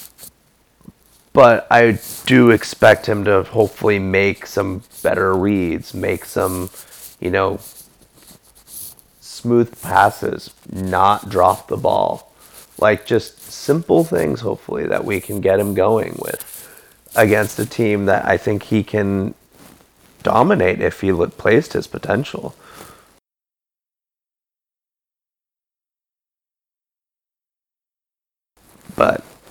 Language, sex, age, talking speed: English, male, 30-49, 100 wpm